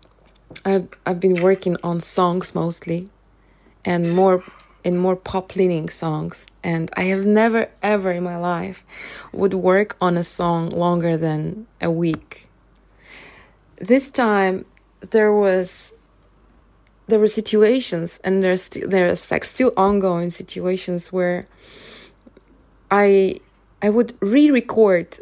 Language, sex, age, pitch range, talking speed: English, female, 20-39, 175-220 Hz, 120 wpm